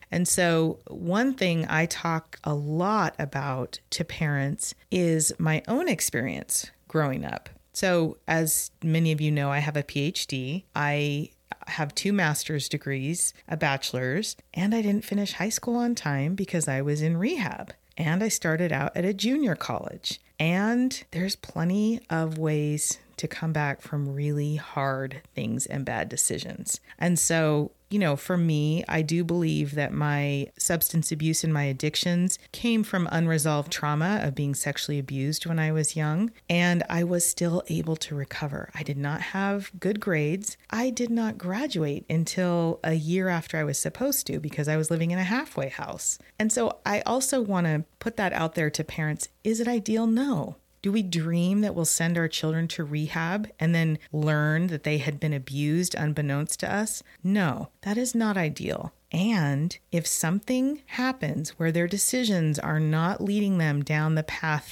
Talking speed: 175 wpm